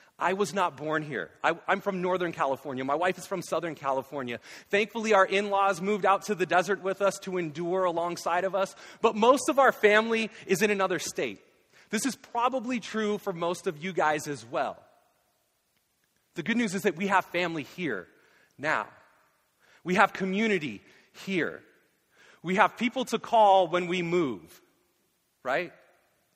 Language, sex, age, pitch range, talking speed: English, male, 30-49, 165-210 Hz, 165 wpm